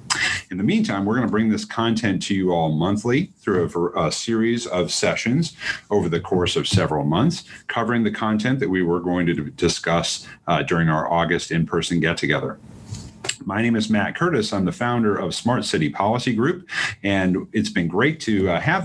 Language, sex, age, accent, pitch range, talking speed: English, male, 40-59, American, 90-120 Hz, 190 wpm